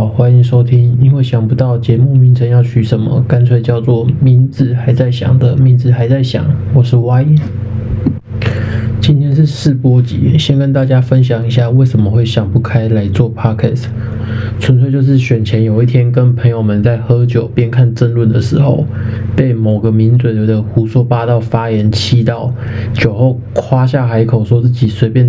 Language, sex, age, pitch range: Chinese, male, 20-39, 115-130 Hz